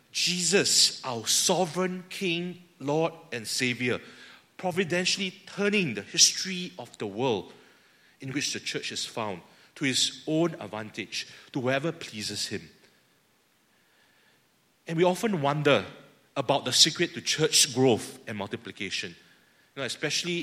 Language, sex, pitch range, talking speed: English, male, 125-170 Hz, 120 wpm